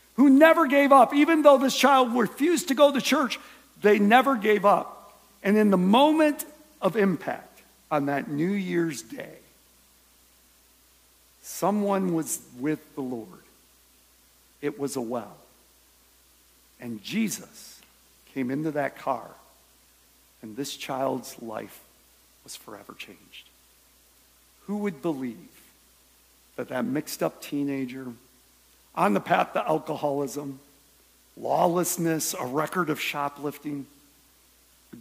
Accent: American